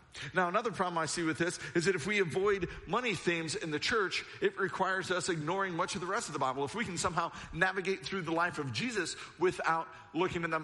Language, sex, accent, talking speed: English, male, American, 235 wpm